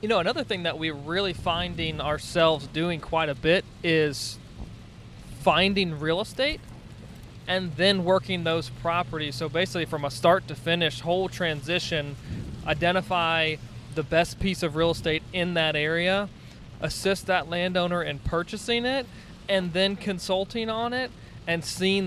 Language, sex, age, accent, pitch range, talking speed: English, male, 20-39, American, 150-180 Hz, 150 wpm